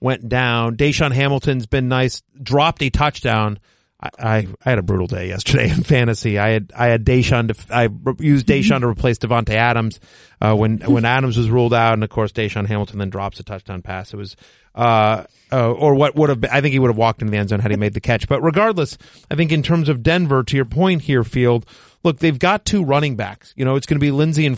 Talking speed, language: 240 wpm, English